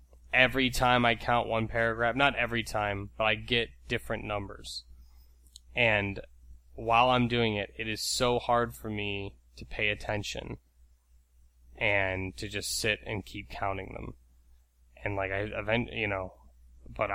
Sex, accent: male, American